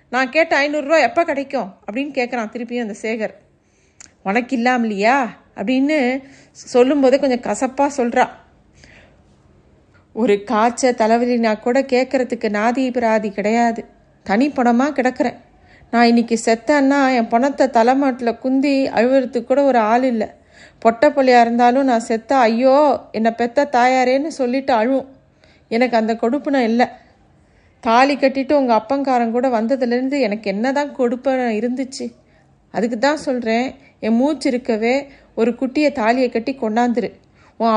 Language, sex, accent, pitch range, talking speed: Tamil, female, native, 230-270 Hz, 120 wpm